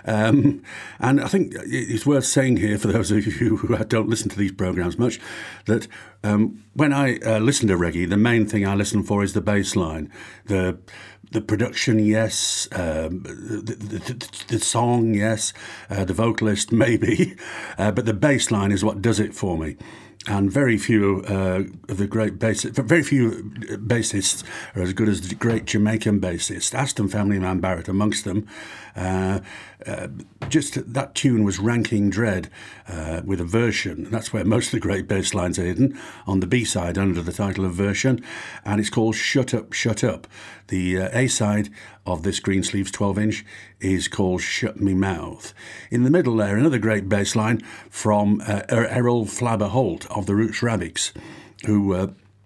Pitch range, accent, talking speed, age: 95-115 Hz, British, 175 wpm, 50-69